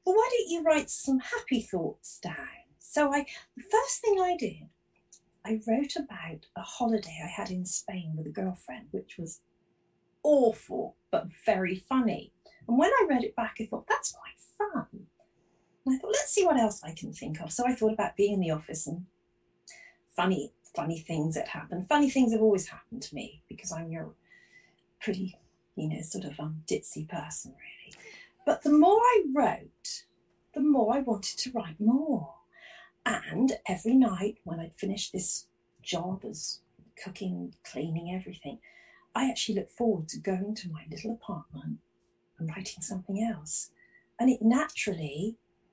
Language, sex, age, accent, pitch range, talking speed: English, female, 40-59, British, 180-280 Hz, 170 wpm